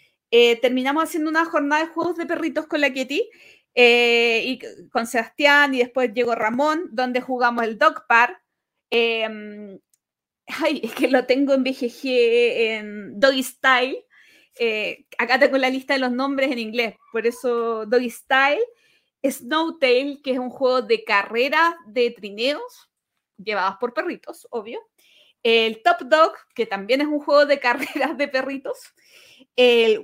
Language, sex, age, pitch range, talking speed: Spanish, female, 30-49, 245-315 Hz, 155 wpm